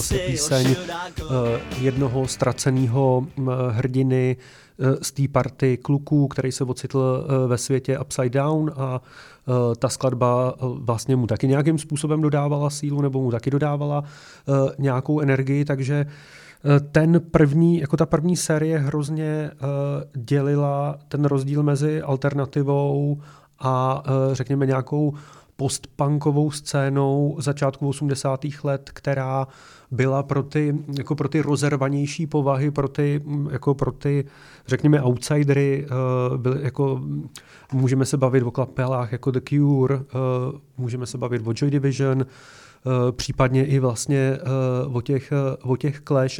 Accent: native